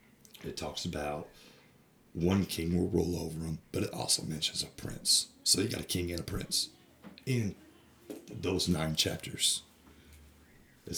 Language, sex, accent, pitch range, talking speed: English, male, American, 80-90 Hz, 155 wpm